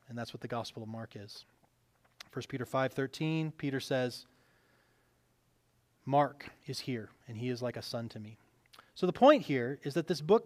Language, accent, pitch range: English, American, 130-195 Hz